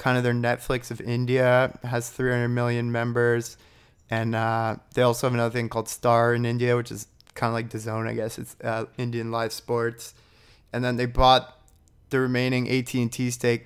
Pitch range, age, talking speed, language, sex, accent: 115-125 Hz, 20-39, 185 wpm, English, male, American